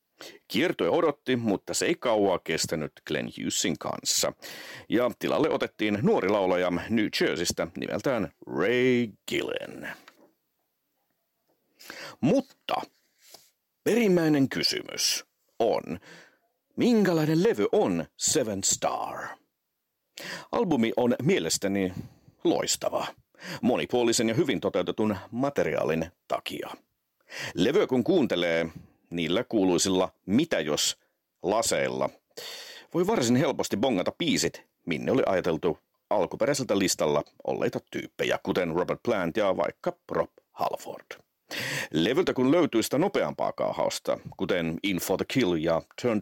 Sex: male